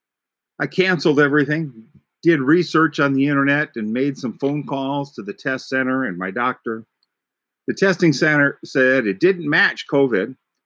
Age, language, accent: 50-69, English, American